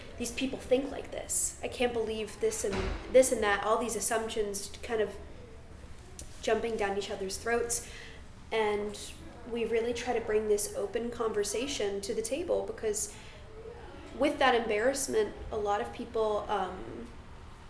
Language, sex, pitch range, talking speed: English, female, 205-250 Hz, 150 wpm